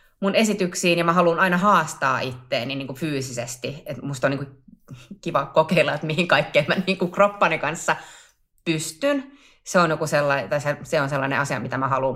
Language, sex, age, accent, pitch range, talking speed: Finnish, female, 30-49, native, 135-175 Hz, 190 wpm